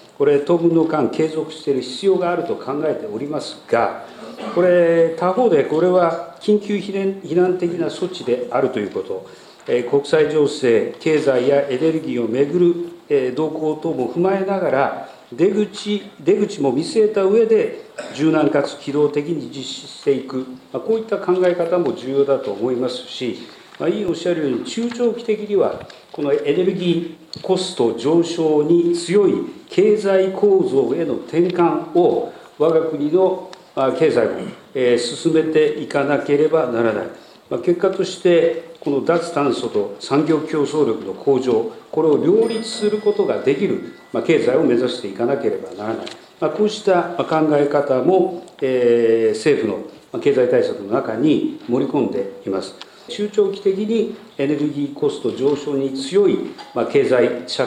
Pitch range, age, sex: 155-225 Hz, 50-69, male